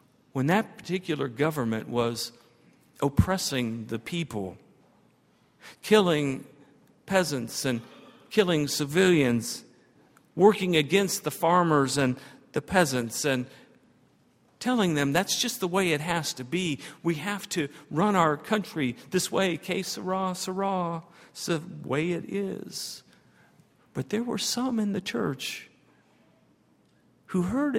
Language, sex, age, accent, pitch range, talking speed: English, male, 50-69, American, 150-205 Hz, 120 wpm